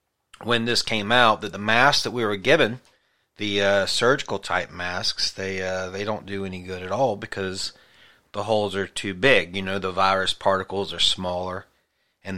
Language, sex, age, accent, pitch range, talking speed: English, male, 40-59, American, 95-110 Hz, 185 wpm